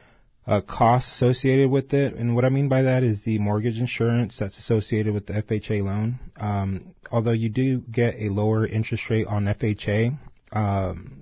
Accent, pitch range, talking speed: American, 100-115 Hz, 175 wpm